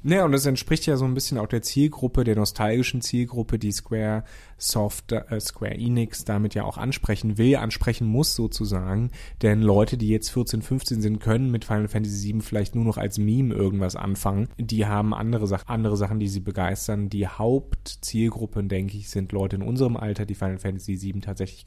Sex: male